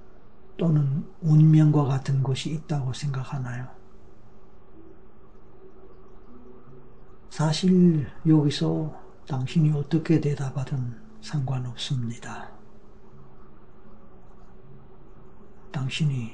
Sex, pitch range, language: male, 125-150 Hz, Korean